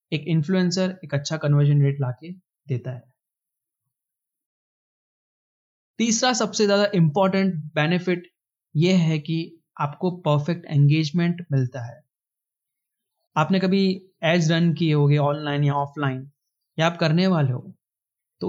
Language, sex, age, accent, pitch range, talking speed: Hindi, male, 20-39, native, 145-180 Hz, 120 wpm